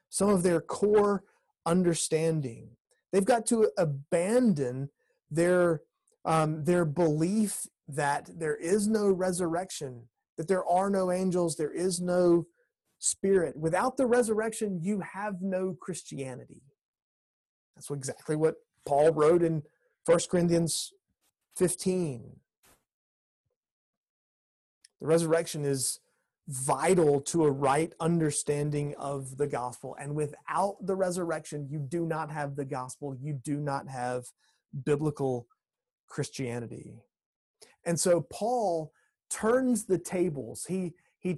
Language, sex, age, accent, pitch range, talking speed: English, male, 30-49, American, 145-185 Hz, 115 wpm